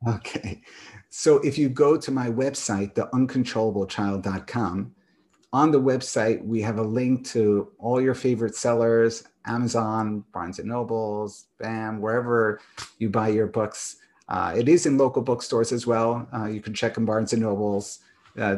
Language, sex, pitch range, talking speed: English, male, 105-130 Hz, 155 wpm